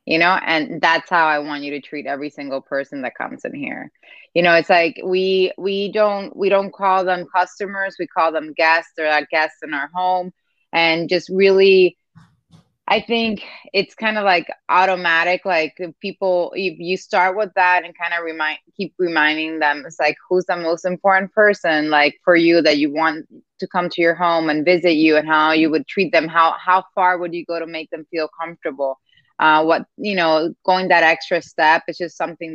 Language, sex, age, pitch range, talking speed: English, female, 20-39, 155-185 Hz, 205 wpm